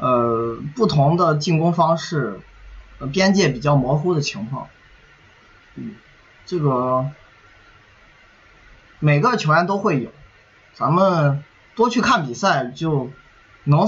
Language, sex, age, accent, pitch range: Chinese, male, 20-39, native, 130-185 Hz